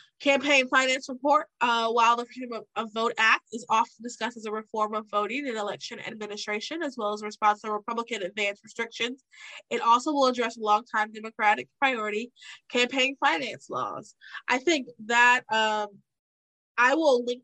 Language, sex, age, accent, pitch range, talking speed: English, female, 20-39, American, 210-255 Hz, 160 wpm